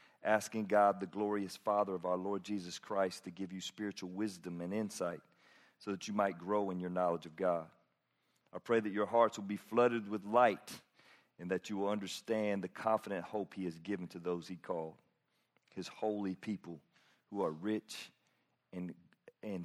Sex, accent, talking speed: male, American, 185 wpm